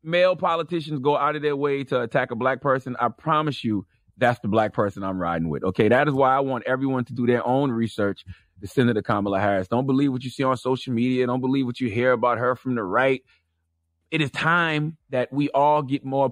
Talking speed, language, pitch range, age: 235 wpm, English, 105-140 Hz, 30-49